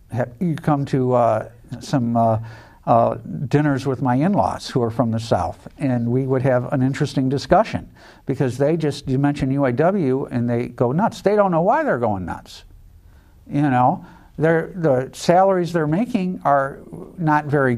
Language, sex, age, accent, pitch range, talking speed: English, male, 60-79, American, 125-165 Hz, 165 wpm